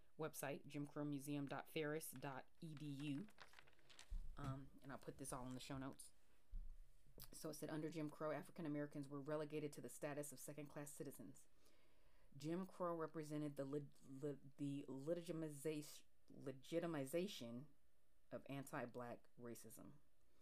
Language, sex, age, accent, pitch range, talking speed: English, female, 30-49, American, 130-150 Hz, 120 wpm